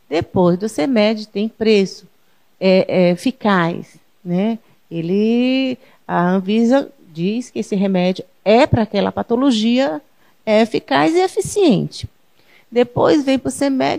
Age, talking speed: 40-59, 115 wpm